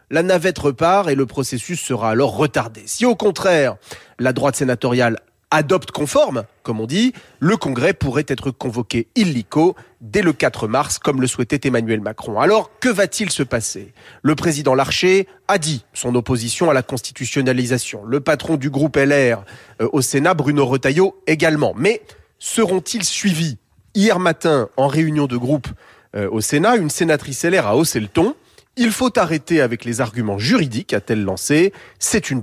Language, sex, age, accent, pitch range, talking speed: French, male, 30-49, French, 125-175 Hz, 165 wpm